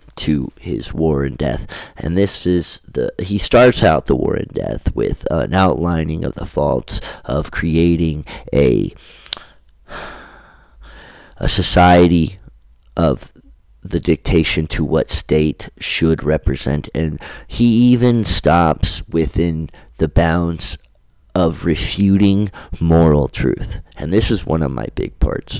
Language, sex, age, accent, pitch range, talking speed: English, male, 30-49, American, 80-100 Hz, 125 wpm